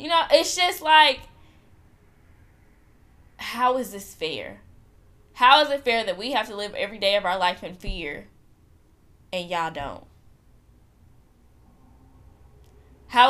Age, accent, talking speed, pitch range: 10-29, American, 130 wpm, 155-235 Hz